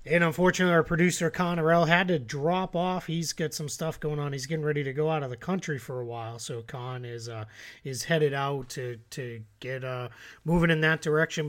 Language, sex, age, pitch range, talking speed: English, male, 30-49, 140-170 Hz, 220 wpm